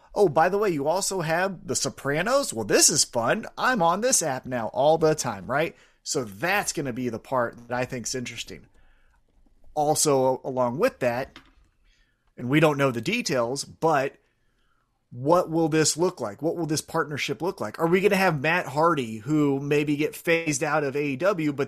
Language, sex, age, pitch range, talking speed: English, male, 30-49, 135-175 Hz, 195 wpm